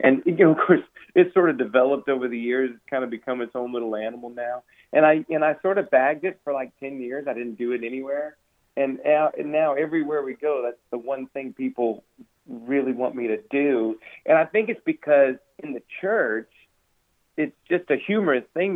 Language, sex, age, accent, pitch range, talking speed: English, male, 40-59, American, 125-155 Hz, 220 wpm